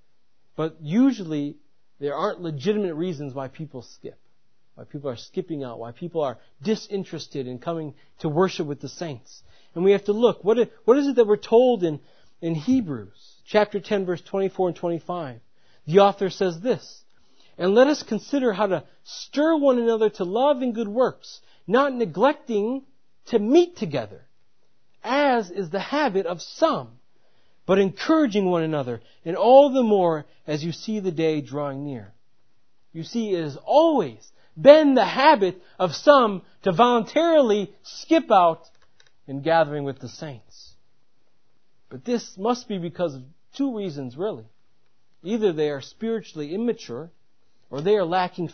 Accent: American